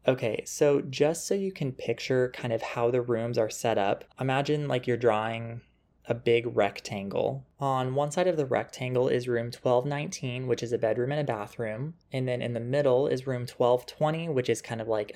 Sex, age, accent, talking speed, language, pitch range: male, 20-39, American, 200 wpm, English, 115-150 Hz